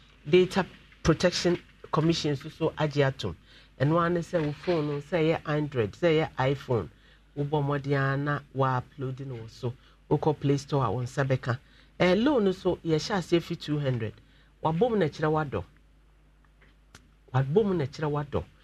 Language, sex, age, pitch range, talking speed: English, male, 50-69, 135-185 Hz, 140 wpm